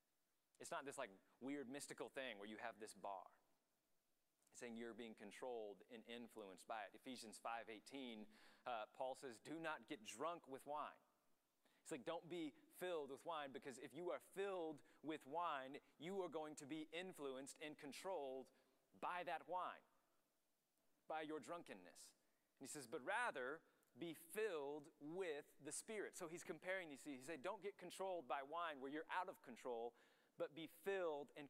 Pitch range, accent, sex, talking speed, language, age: 120-165 Hz, American, male, 175 wpm, English, 30-49